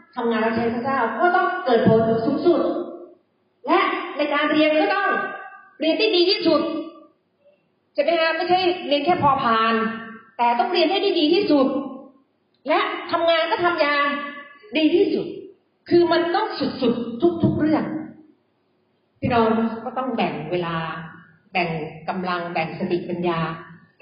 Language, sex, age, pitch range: Thai, female, 40-59, 180-305 Hz